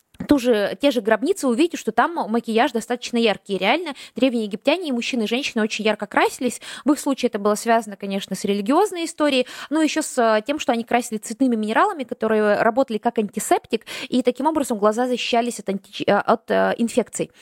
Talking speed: 170 wpm